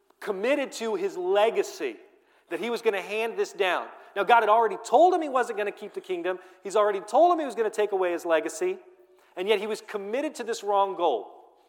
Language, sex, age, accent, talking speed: English, male, 40-59, American, 235 wpm